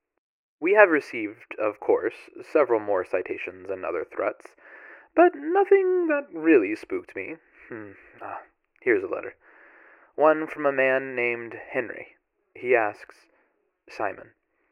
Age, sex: 20-39, male